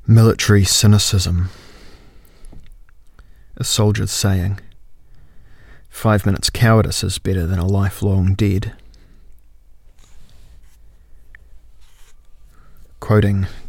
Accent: Australian